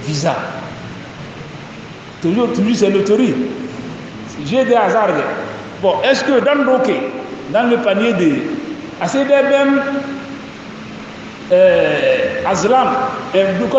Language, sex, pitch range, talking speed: English, male, 215-265 Hz, 90 wpm